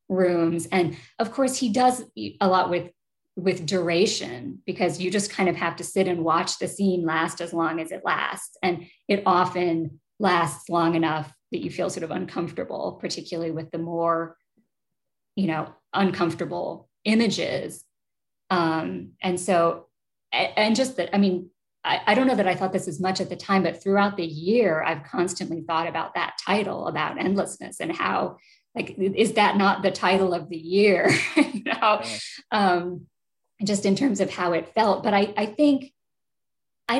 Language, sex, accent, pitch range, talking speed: English, female, American, 165-200 Hz, 175 wpm